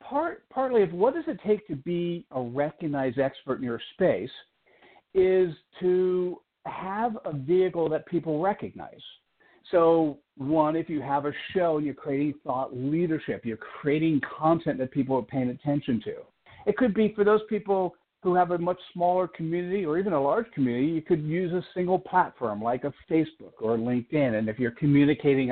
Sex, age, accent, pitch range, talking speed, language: male, 60-79, American, 135-185 Hz, 180 wpm, English